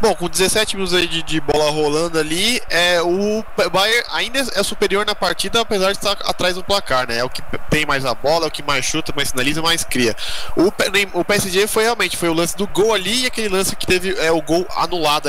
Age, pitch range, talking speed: 20-39, 140-190 Hz, 240 wpm